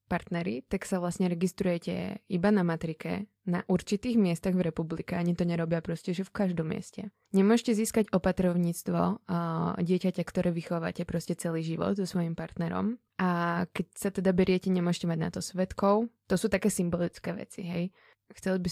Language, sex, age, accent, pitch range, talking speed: Czech, female, 20-39, native, 170-185 Hz, 165 wpm